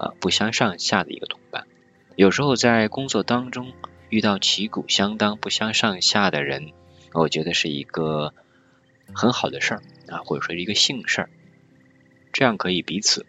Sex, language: male, Chinese